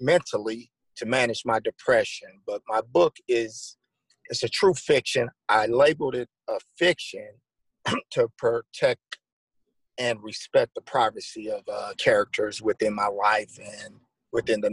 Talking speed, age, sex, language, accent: 135 wpm, 50-69, male, English, American